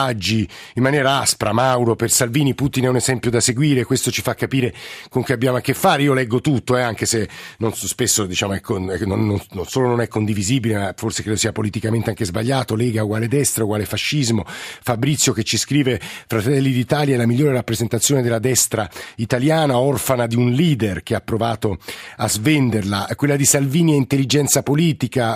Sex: male